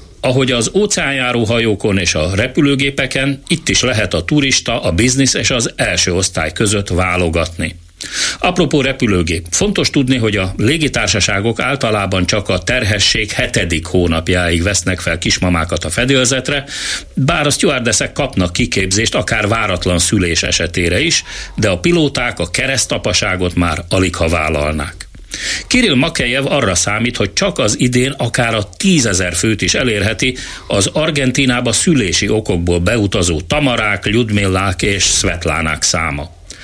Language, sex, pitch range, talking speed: Hungarian, male, 90-125 Hz, 130 wpm